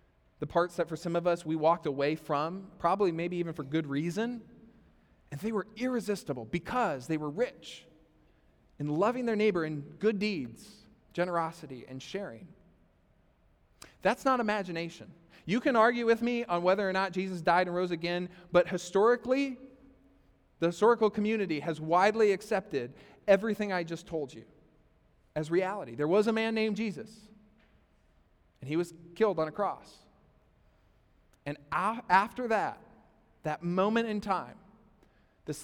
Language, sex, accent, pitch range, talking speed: English, male, American, 165-220 Hz, 150 wpm